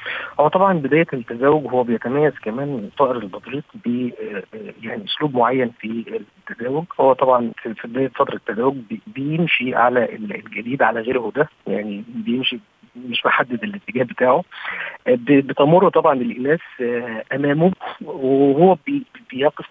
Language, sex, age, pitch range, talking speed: Arabic, male, 50-69, 115-155 Hz, 115 wpm